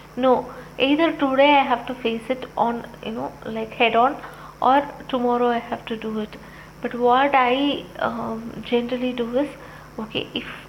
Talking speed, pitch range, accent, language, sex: 170 wpm, 235-270 Hz, native, Tamil, female